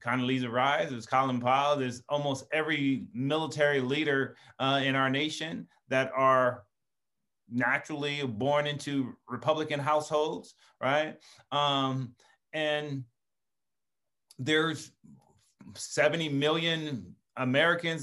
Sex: male